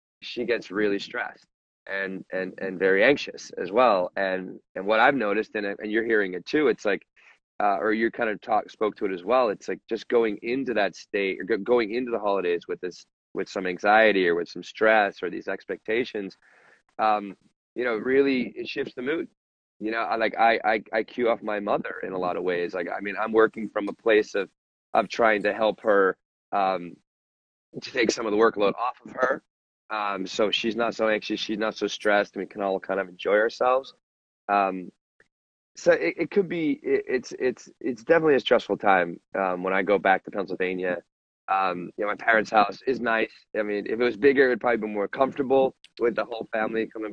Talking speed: 220 wpm